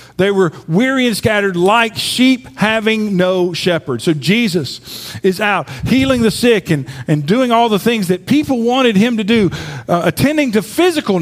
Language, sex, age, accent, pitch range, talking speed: English, male, 50-69, American, 155-230 Hz, 175 wpm